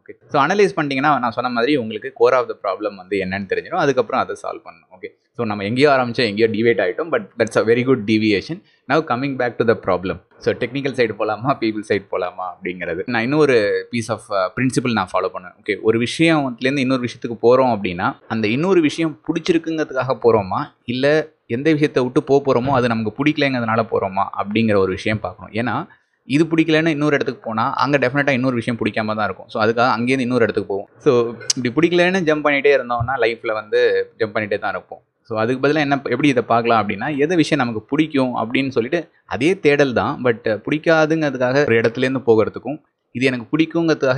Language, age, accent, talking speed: Tamil, 20-39, native, 180 wpm